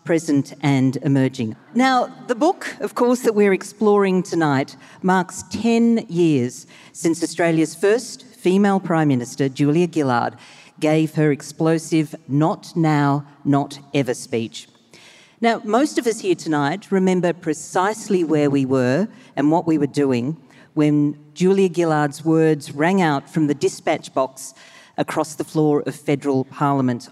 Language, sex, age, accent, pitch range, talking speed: English, female, 50-69, Australian, 140-185 Hz, 140 wpm